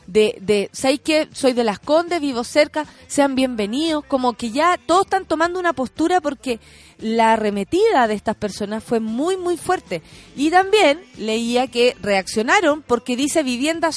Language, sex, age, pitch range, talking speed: Spanish, female, 30-49, 245-315 Hz, 165 wpm